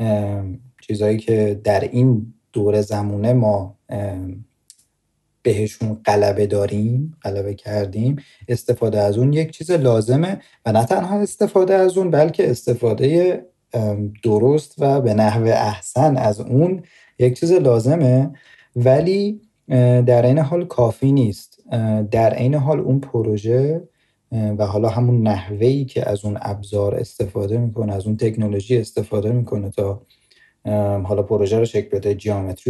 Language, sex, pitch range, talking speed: Persian, male, 105-135 Hz, 125 wpm